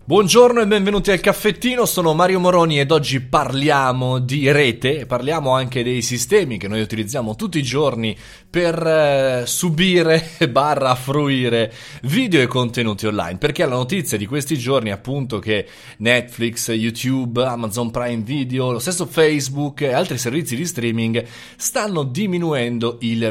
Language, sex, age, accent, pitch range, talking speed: Italian, male, 20-39, native, 115-160 Hz, 145 wpm